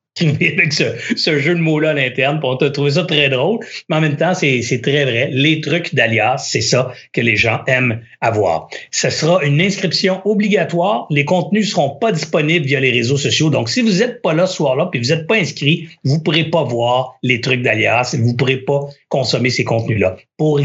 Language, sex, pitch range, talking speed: French, male, 130-175 Hz, 210 wpm